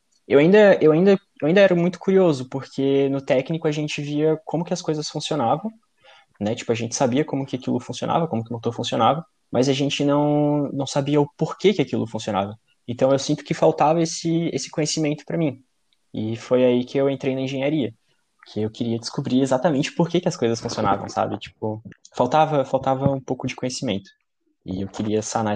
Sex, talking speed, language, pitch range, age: male, 200 wpm, Portuguese, 120-155 Hz, 20-39